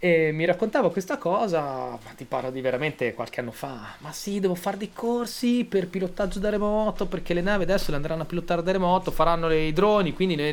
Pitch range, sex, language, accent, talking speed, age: 130-190 Hz, male, Italian, native, 215 wpm, 20-39